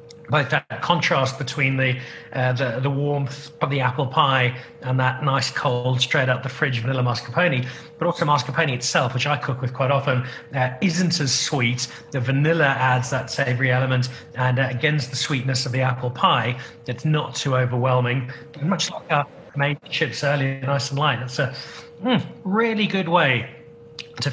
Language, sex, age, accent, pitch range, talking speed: English, male, 30-49, British, 130-160 Hz, 180 wpm